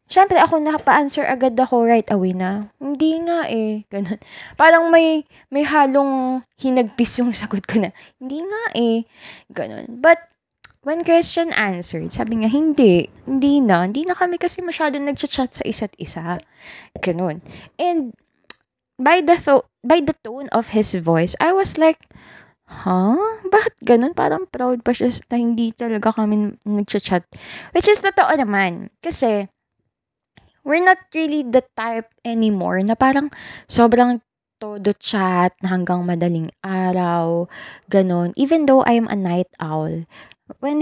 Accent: native